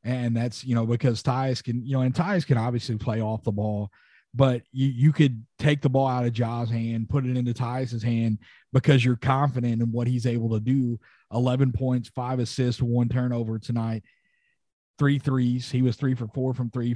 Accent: American